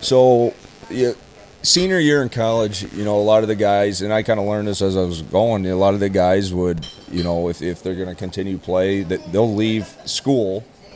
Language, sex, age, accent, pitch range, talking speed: English, male, 30-49, American, 90-105 Hz, 230 wpm